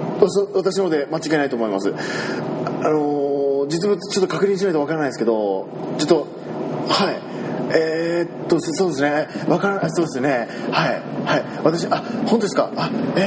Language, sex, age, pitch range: Japanese, male, 20-39, 160-225 Hz